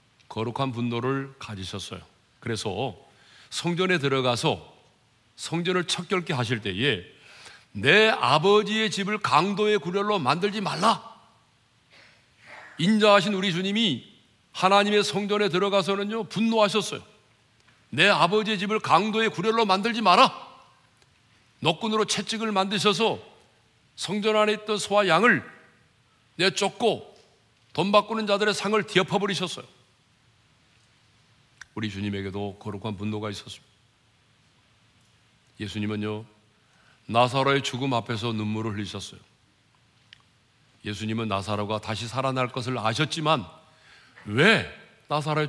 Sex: male